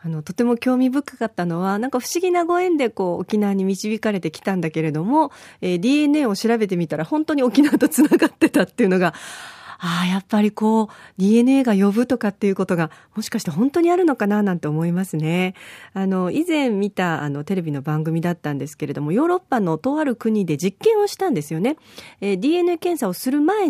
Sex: female